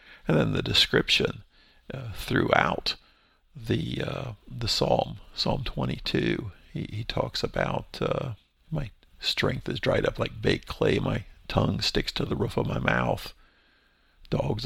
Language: English